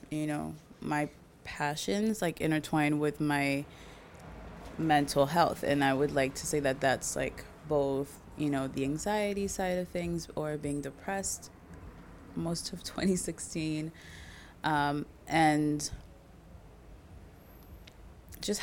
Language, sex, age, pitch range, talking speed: English, female, 20-39, 135-160 Hz, 115 wpm